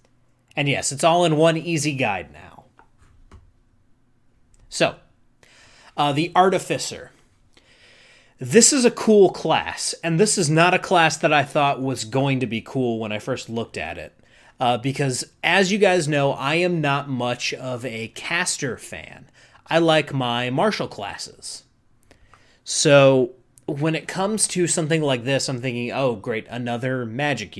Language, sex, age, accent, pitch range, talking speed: English, male, 30-49, American, 120-160 Hz, 155 wpm